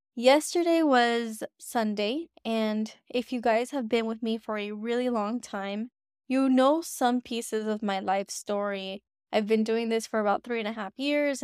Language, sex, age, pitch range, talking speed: English, female, 10-29, 210-245 Hz, 185 wpm